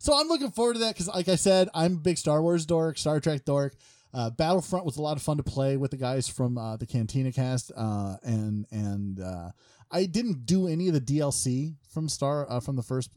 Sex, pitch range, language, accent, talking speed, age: male, 100-150 Hz, English, American, 240 wpm, 30-49